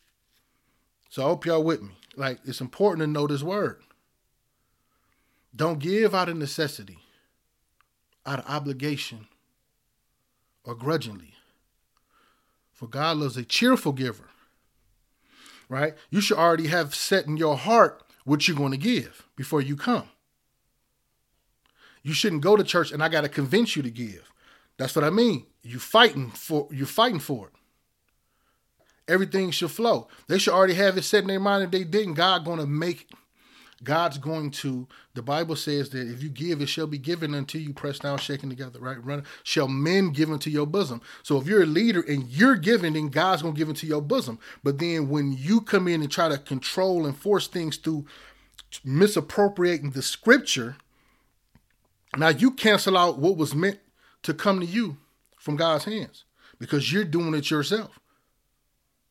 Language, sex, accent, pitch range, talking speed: English, male, American, 140-180 Hz, 170 wpm